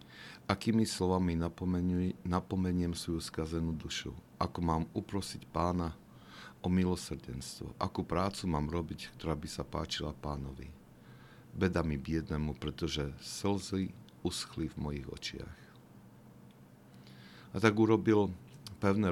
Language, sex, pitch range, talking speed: Slovak, male, 70-90 Hz, 105 wpm